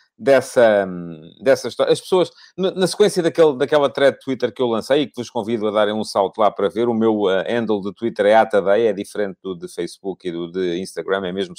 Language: Portuguese